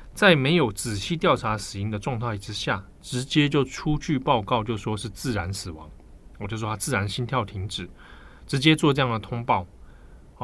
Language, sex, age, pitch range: Chinese, male, 20-39, 100-135 Hz